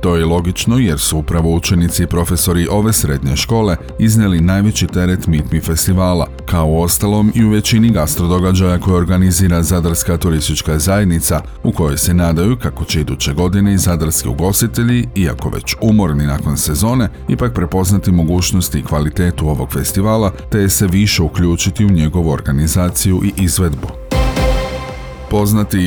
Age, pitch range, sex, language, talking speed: 40-59, 85-100 Hz, male, Croatian, 150 wpm